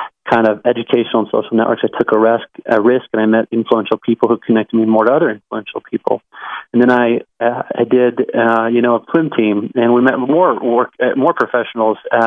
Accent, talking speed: American, 220 wpm